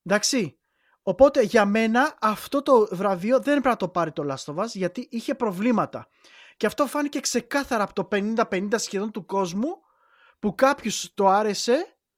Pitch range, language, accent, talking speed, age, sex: 195-265 Hz, Greek, native, 155 wpm, 20-39, male